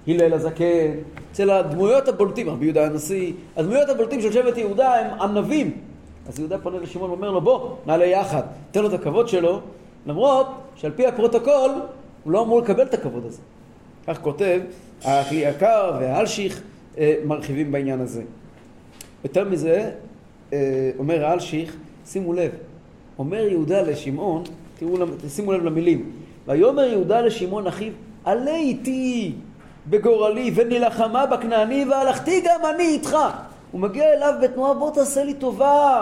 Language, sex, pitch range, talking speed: Hebrew, male, 180-275 Hz, 140 wpm